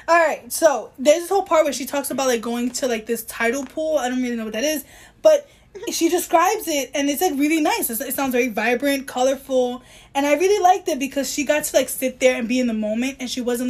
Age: 20-39